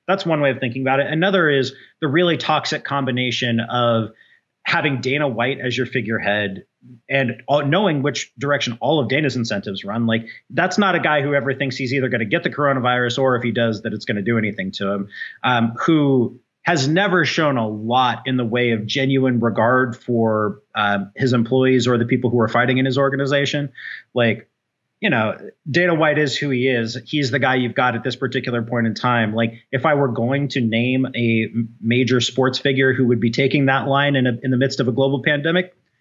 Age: 30-49